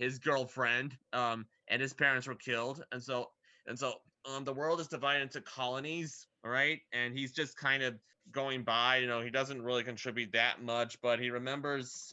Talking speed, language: 195 wpm, English